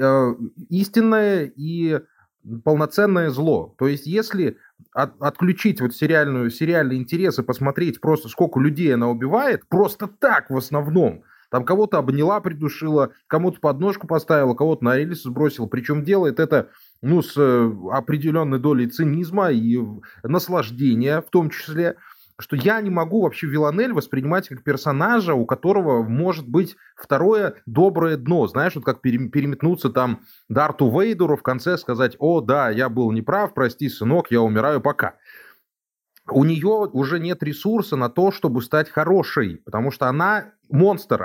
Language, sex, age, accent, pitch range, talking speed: Russian, male, 20-39, native, 130-180 Hz, 145 wpm